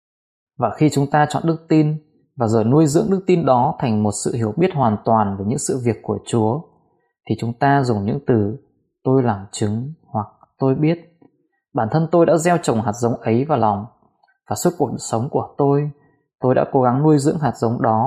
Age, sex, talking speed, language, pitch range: 20-39, male, 215 wpm, Vietnamese, 120-155 Hz